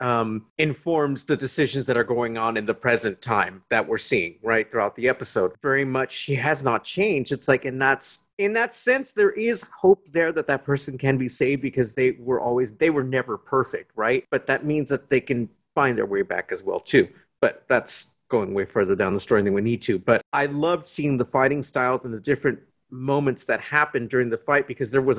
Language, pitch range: English, 125-160 Hz